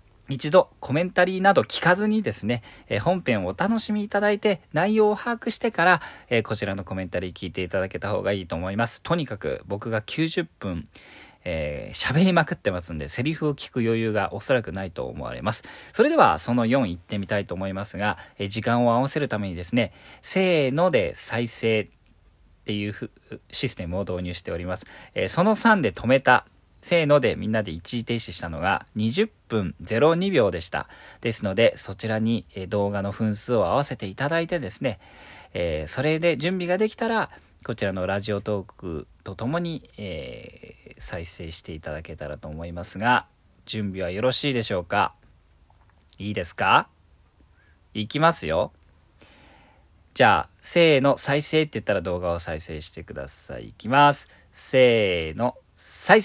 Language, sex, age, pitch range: Japanese, male, 40-59, 95-155 Hz